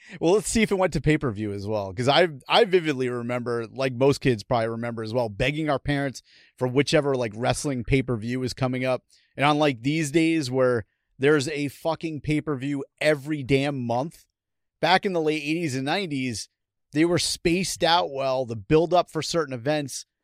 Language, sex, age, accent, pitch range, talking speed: English, male, 30-49, American, 120-150 Hz, 185 wpm